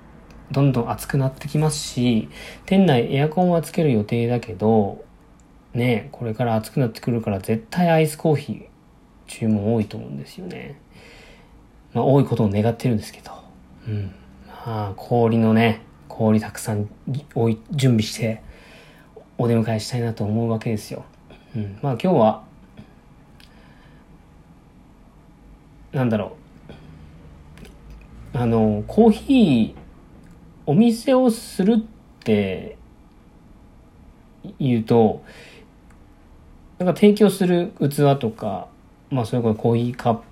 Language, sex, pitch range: Japanese, male, 105-145 Hz